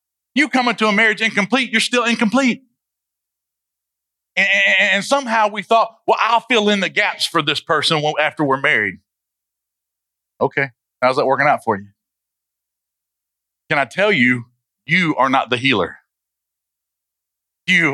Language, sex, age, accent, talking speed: English, male, 40-59, American, 140 wpm